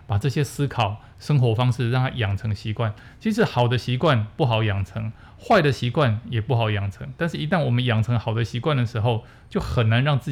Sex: male